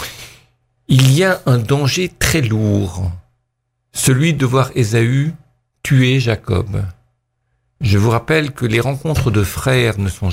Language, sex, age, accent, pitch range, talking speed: French, male, 60-79, French, 110-135 Hz, 135 wpm